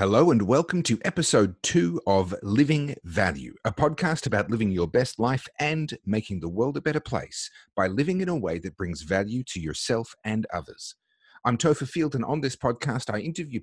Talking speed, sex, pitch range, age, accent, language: 195 wpm, male, 95-150 Hz, 40-59, Australian, English